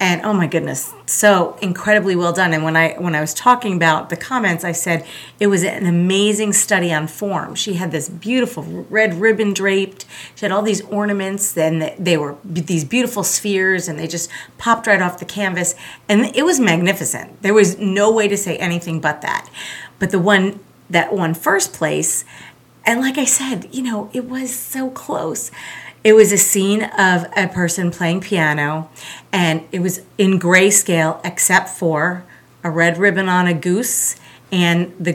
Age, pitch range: 40-59, 170-210 Hz